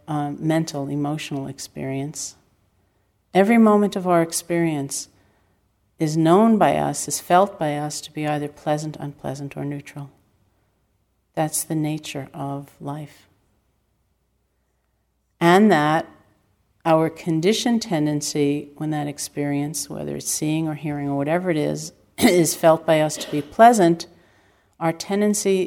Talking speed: 130 wpm